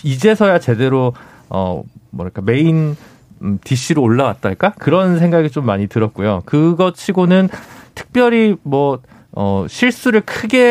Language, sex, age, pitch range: Korean, male, 40-59, 120-190 Hz